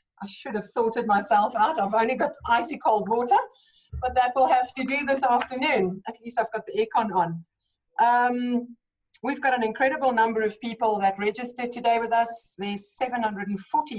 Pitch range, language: 220-260 Hz, English